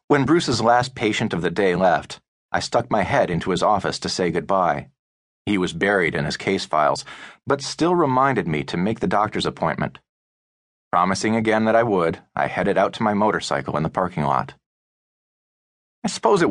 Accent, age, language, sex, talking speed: American, 40-59, English, male, 190 wpm